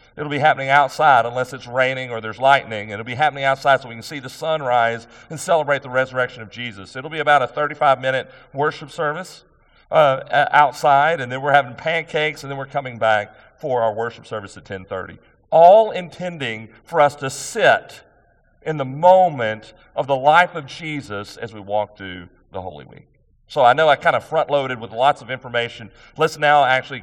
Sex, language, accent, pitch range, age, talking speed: male, English, American, 115-150 Hz, 40-59, 190 wpm